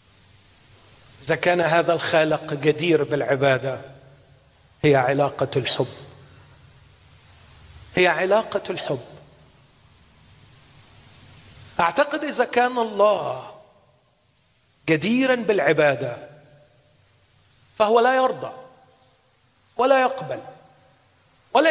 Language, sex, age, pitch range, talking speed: Arabic, male, 40-59, 115-165 Hz, 65 wpm